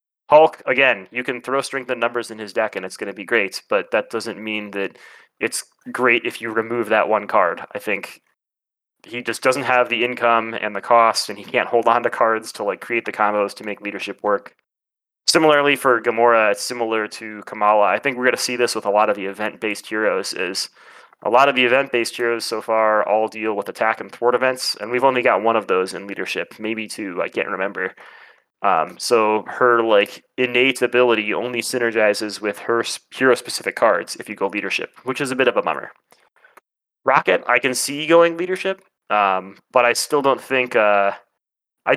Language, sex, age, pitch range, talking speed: English, male, 20-39, 105-125 Hz, 210 wpm